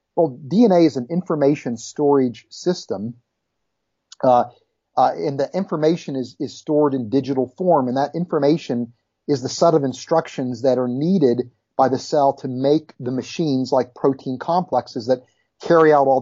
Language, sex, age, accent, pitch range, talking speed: English, male, 40-59, American, 125-160 Hz, 160 wpm